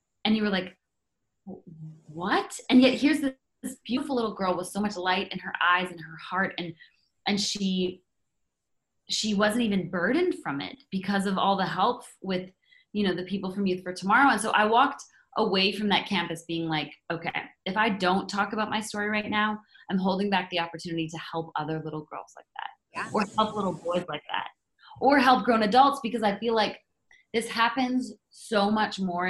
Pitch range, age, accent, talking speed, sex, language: 175-210 Hz, 20-39, American, 195 wpm, female, English